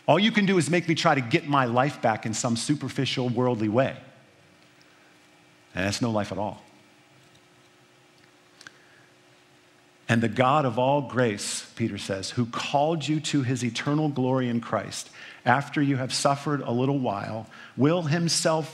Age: 50-69